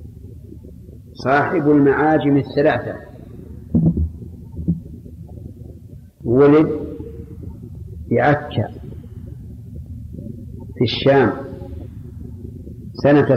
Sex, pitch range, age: male, 105-135 Hz, 50-69